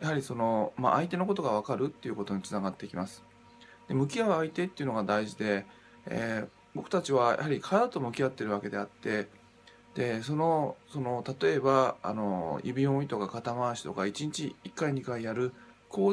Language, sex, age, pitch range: Japanese, male, 20-39, 110-155 Hz